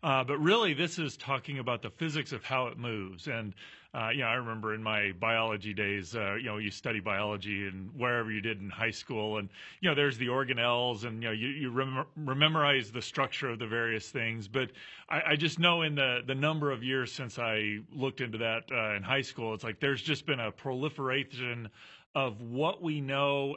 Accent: American